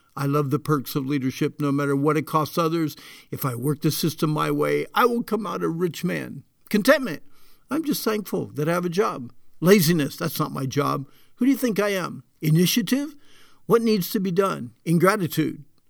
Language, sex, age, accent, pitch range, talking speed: English, male, 60-79, American, 145-185 Hz, 200 wpm